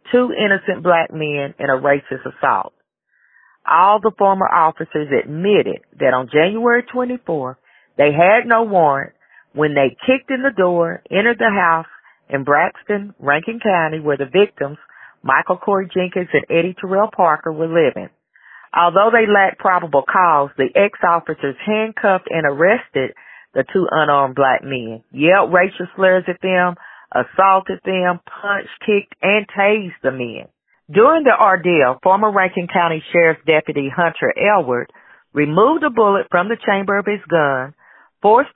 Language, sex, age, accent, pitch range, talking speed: English, female, 40-59, American, 150-200 Hz, 145 wpm